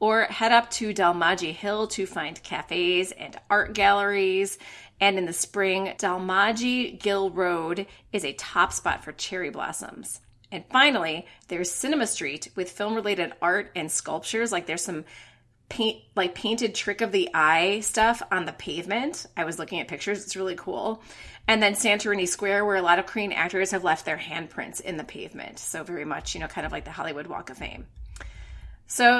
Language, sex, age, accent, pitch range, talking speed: English, female, 30-49, American, 175-220 Hz, 175 wpm